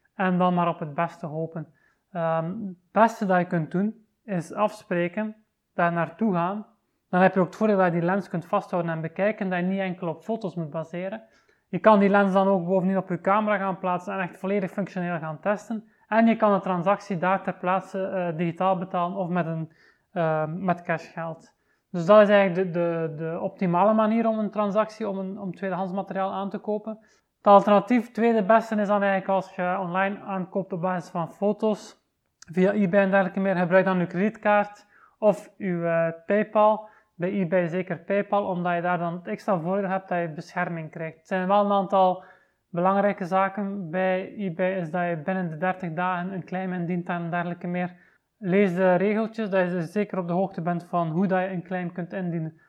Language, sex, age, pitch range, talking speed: Dutch, male, 30-49, 175-205 Hz, 205 wpm